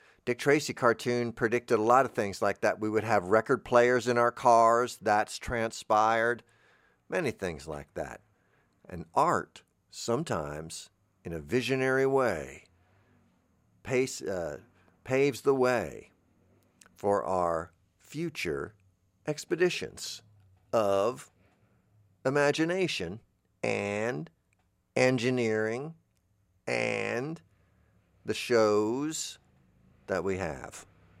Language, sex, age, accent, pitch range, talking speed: English, male, 50-69, American, 95-130 Hz, 95 wpm